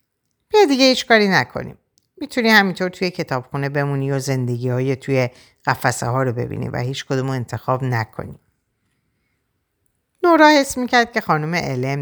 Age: 50-69